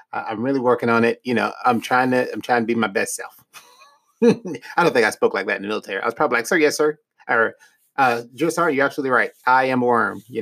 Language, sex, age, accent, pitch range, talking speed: English, male, 30-49, American, 135-200 Hz, 265 wpm